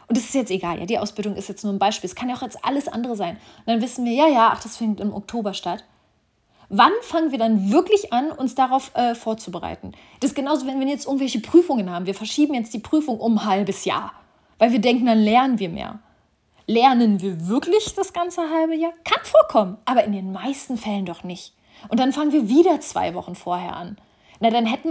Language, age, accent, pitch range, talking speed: German, 30-49, German, 205-255 Hz, 230 wpm